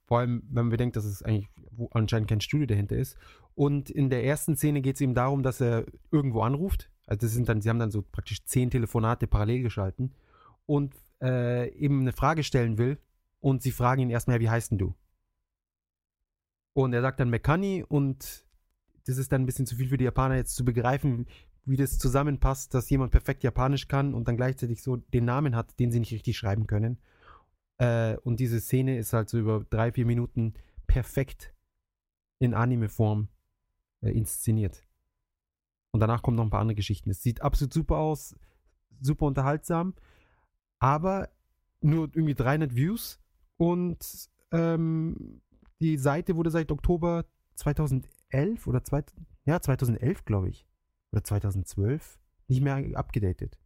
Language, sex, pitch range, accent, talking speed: German, male, 110-140 Hz, German, 165 wpm